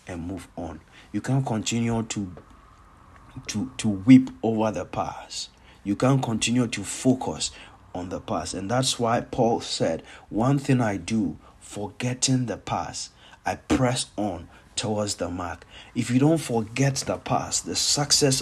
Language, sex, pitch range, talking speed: English, male, 110-140 Hz, 155 wpm